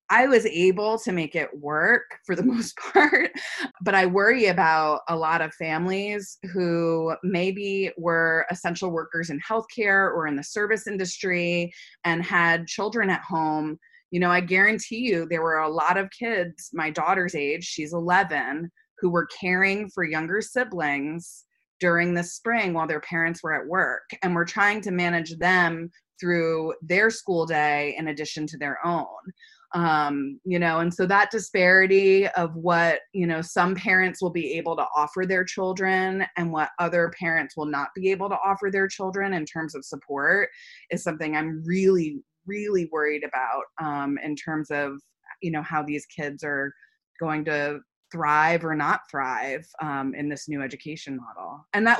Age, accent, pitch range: 20-39, American, 155-190 Hz